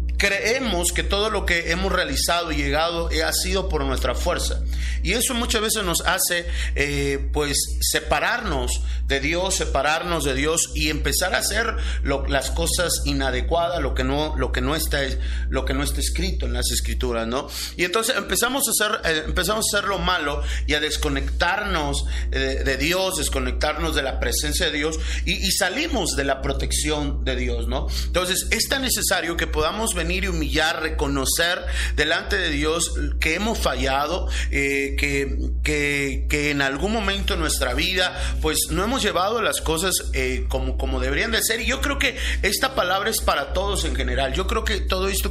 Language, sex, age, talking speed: Spanish, male, 40-59, 185 wpm